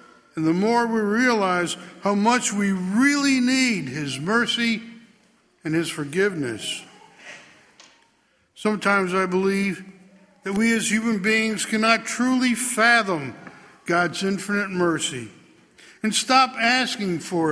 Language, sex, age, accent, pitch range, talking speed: English, male, 60-79, American, 170-235 Hz, 115 wpm